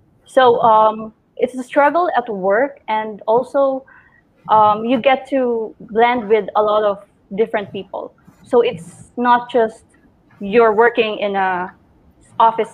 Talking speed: 135 wpm